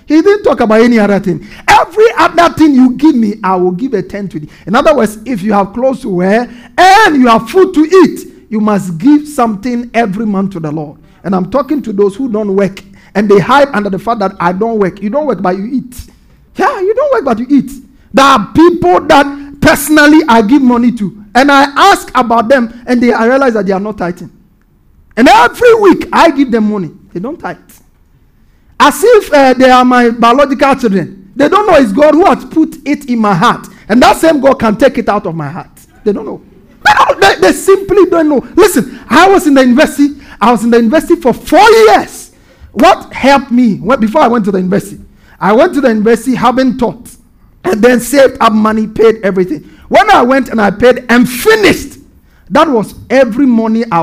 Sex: male